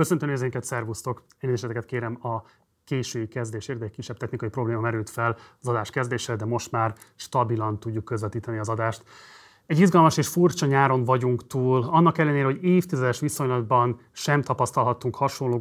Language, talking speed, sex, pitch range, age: Hungarian, 155 wpm, male, 120-140 Hz, 30-49